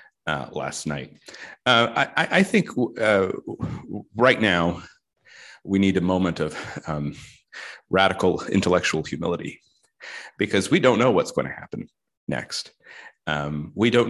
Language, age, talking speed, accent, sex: English, 40-59, 130 wpm, American, male